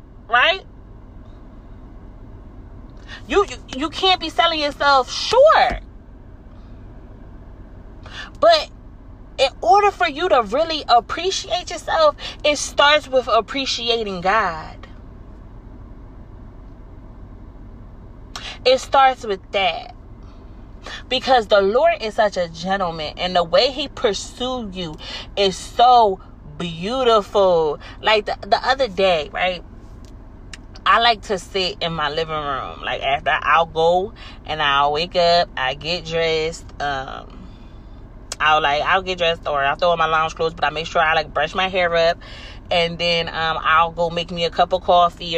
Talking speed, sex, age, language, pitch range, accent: 135 wpm, female, 30-49, English, 150-245 Hz, American